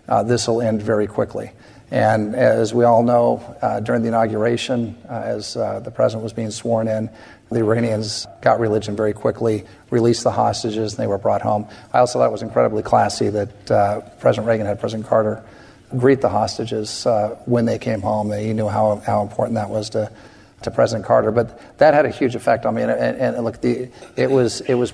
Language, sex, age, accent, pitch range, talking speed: English, male, 50-69, American, 110-120 Hz, 200 wpm